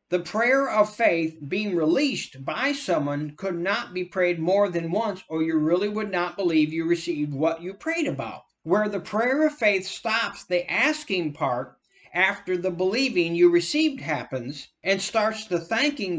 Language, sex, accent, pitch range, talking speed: English, male, American, 165-210 Hz, 170 wpm